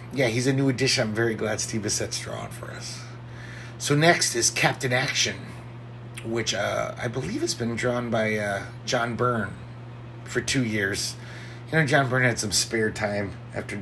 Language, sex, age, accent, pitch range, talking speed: English, male, 30-49, American, 110-125 Hz, 180 wpm